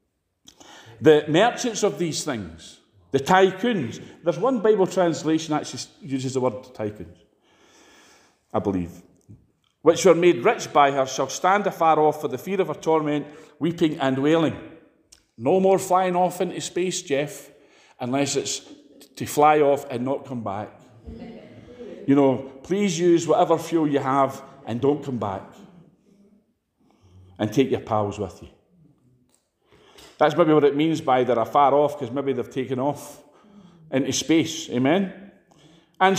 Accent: British